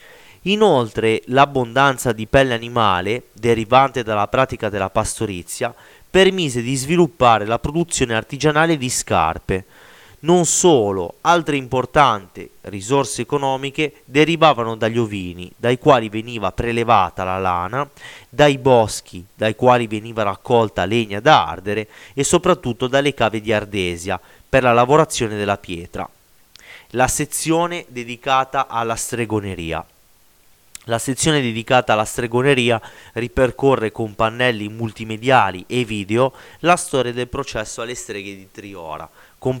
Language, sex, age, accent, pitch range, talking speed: Italian, male, 30-49, native, 110-140 Hz, 120 wpm